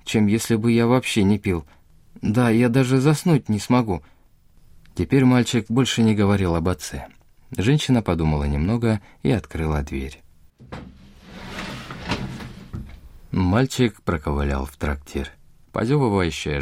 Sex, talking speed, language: male, 110 wpm, Russian